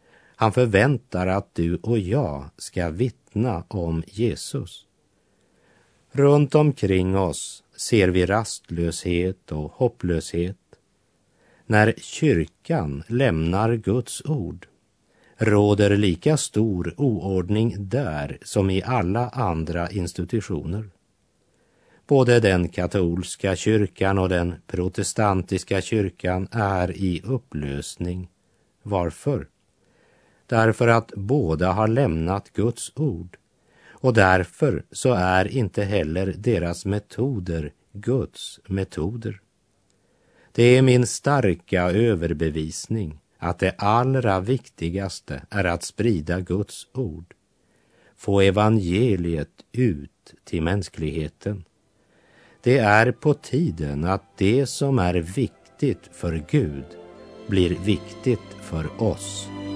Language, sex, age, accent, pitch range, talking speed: Swedish, male, 60-79, native, 90-115 Hz, 95 wpm